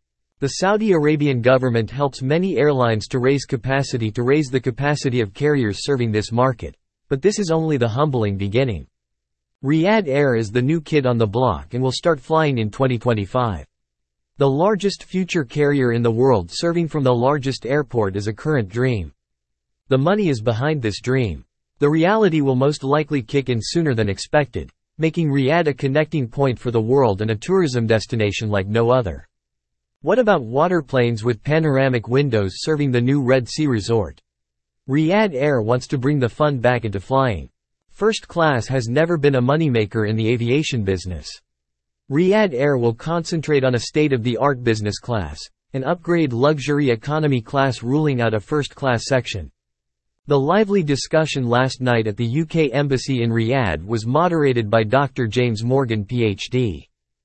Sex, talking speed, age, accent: male, 165 wpm, 40-59, American